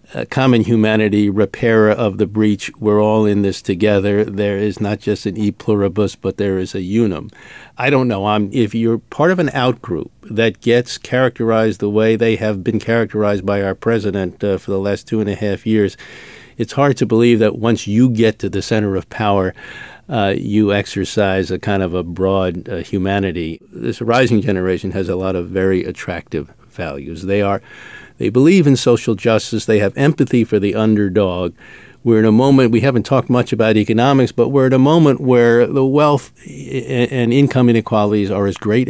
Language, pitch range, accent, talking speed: English, 100-120 Hz, American, 195 wpm